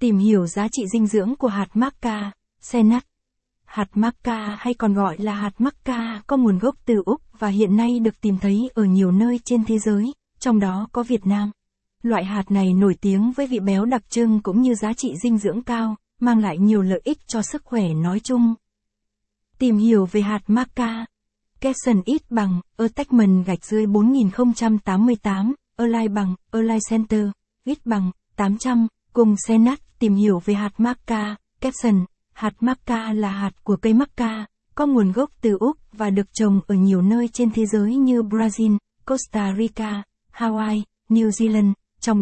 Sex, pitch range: female, 205-240 Hz